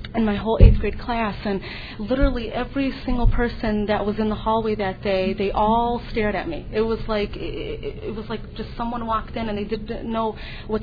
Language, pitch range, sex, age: English, 205-230 Hz, female, 30-49